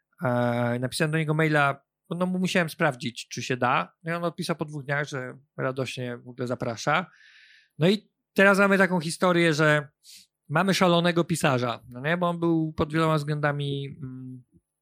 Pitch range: 135-170 Hz